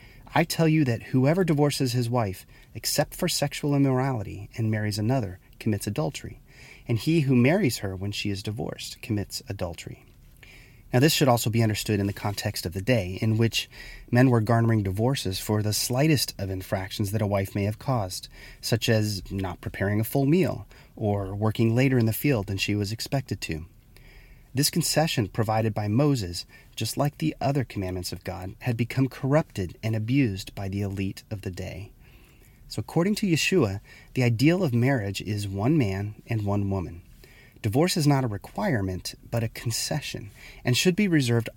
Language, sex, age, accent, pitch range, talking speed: English, male, 30-49, American, 105-130 Hz, 180 wpm